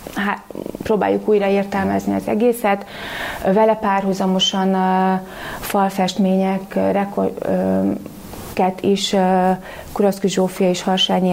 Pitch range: 185-205 Hz